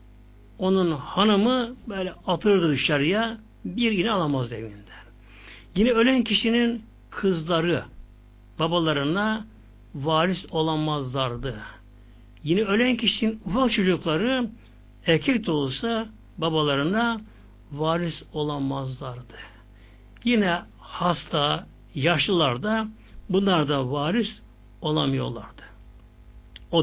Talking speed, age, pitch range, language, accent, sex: 75 wpm, 60-79, 115-190 Hz, Turkish, native, male